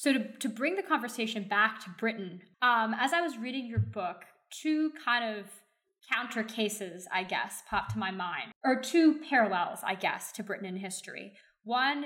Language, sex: English, female